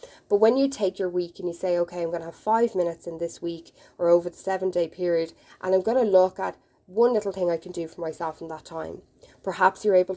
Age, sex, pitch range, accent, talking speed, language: 10-29, female, 170-205 Hz, Irish, 265 wpm, English